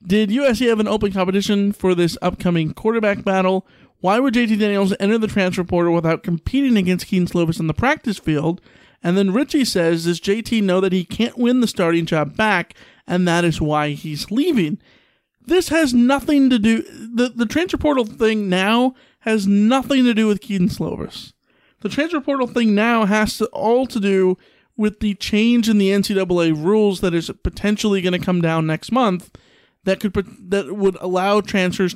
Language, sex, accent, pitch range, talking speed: English, male, American, 185-240 Hz, 180 wpm